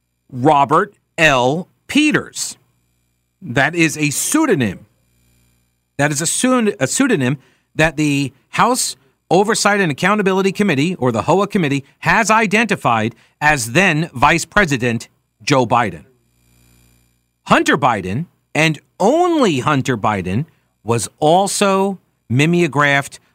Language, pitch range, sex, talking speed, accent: English, 115-185 Hz, male, 100 wpm, American